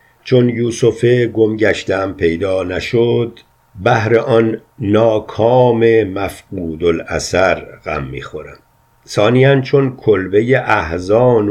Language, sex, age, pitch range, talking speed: Persian, male, 50-69, 95-120 Hz, 85 wpm